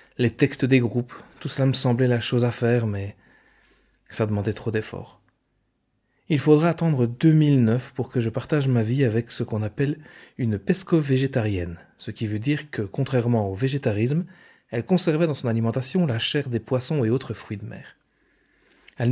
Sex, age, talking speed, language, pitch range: male, 40-59, 175 wpm, French, 115-140 Hz